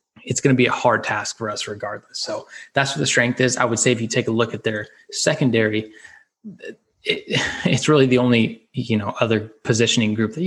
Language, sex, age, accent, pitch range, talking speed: English, male, 20-39, American, 110-125 Hz, 210 wpm